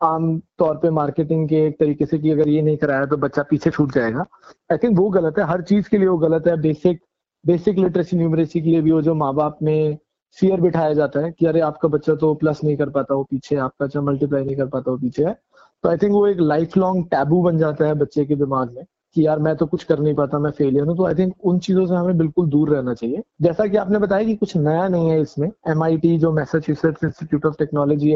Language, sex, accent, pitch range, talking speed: Hindi, male, native, 150-170 Hz, 235 wpm